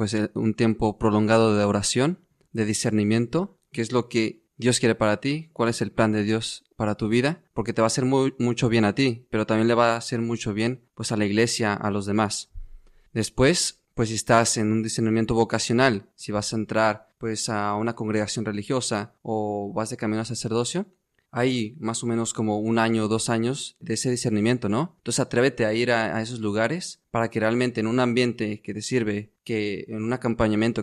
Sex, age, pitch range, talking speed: male, 30-49, 110-120 Hz, 210 wpm